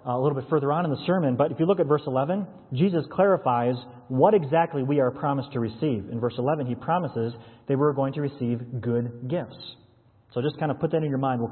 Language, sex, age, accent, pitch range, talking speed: English, male, 30-49, American, 125-155 Hz, 240 wpm